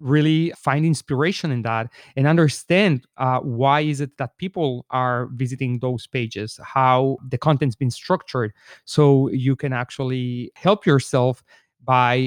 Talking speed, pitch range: 140 wpm, 125-150 Hz